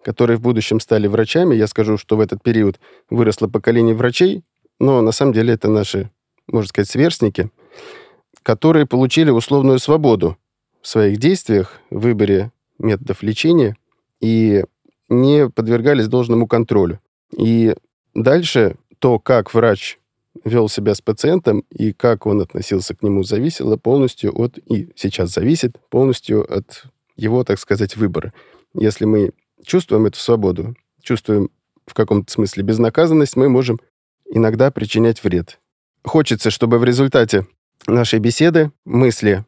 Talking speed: 135 wpm